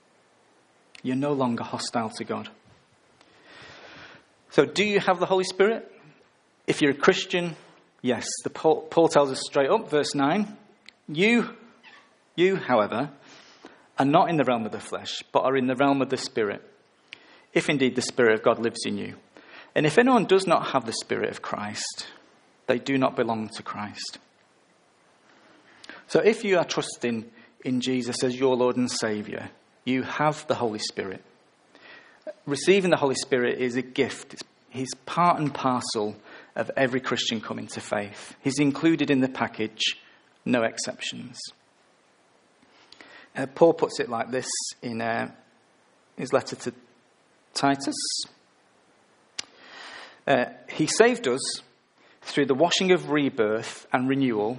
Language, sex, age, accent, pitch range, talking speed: English, male, 40-59, British, 125-160 Hz, 145 wpm